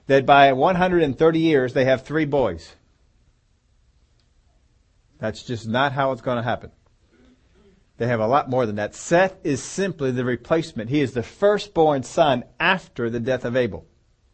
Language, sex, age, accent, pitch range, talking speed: English, male, 40-59, American, 115-165 Hz, 160 wpm